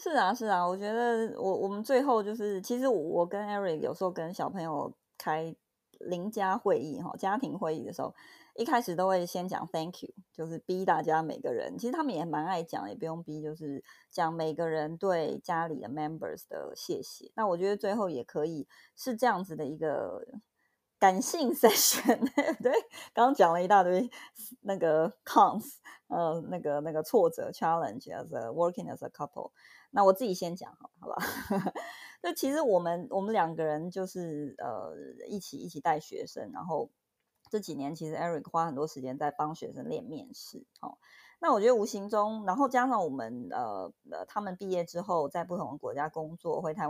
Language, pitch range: Chinese, 160-230 Hz